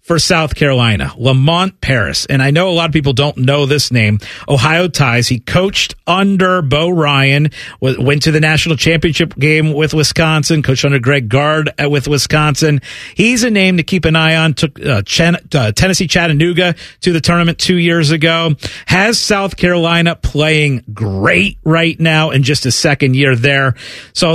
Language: English